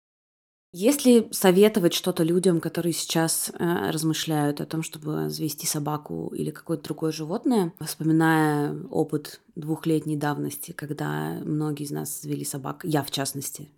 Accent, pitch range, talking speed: native, 155-195 Hz, 130 wpm